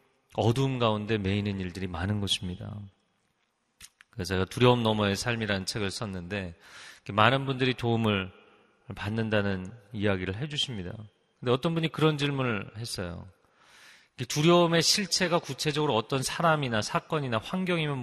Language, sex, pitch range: Korean, male, 105-145 Hz